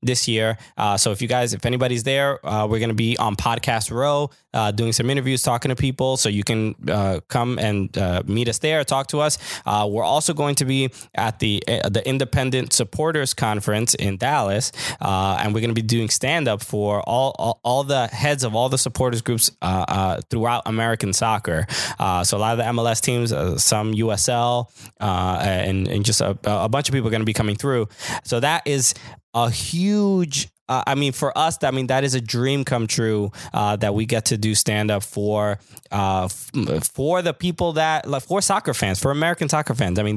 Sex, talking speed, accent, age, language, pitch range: male, 220 wpm, American, 20-39, English, 105-135 Hz